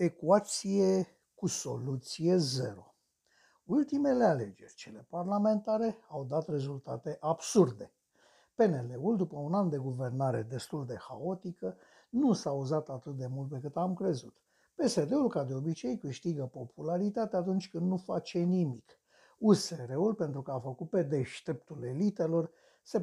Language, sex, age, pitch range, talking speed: Romanian, male, 60-79, 135-185 Hz, 135 wpm